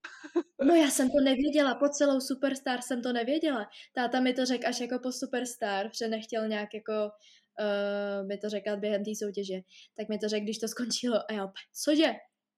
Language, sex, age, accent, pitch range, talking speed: Czech, female, 20-39, native, 205-255 Hz, 190 wpm